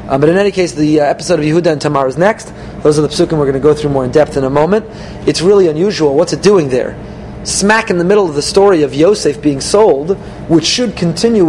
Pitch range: 150-195 Hz